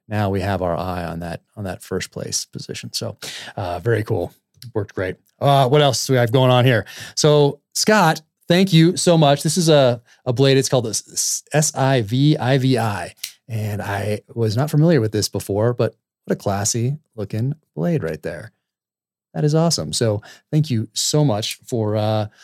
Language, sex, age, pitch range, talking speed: English, male, 30-49, 95-135 Hz, 195 wpm